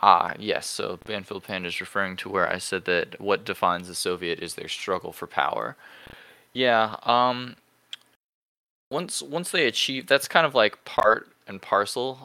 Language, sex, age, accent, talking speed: English, male, 20-39, American, 165 wpm